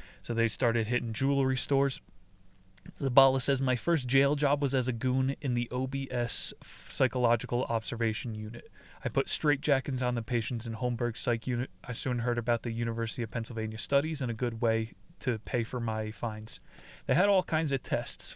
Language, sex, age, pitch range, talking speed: English, male, 20-39, 115-135 Hz, 185 wpm